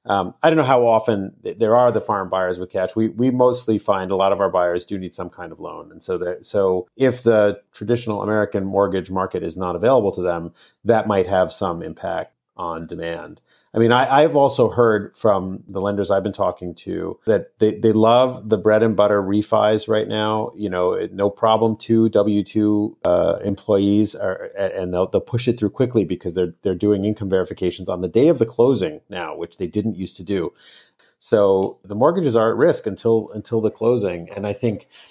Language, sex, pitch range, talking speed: English, male, 90-110 Hz, 210 wpm